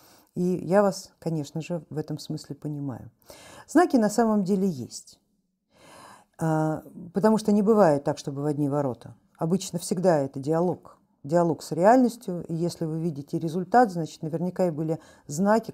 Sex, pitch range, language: female, 160-220 Hz, Russian